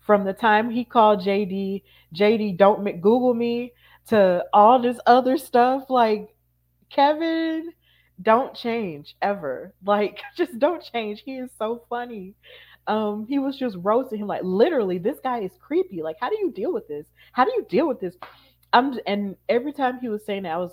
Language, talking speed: English, 180 wpm